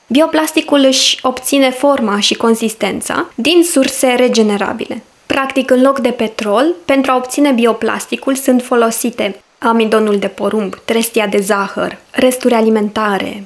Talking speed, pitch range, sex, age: 125 wpm, 220-280 Hz, female, 20-39